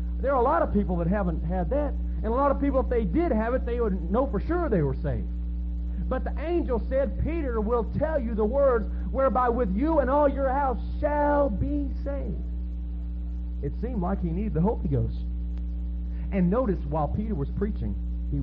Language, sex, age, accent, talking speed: English, male, 40-59, American, 205 wpm